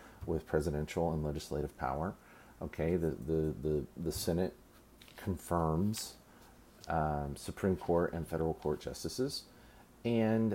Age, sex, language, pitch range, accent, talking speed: 40-59, male, English, 80-100 Hz, American, 115 wpm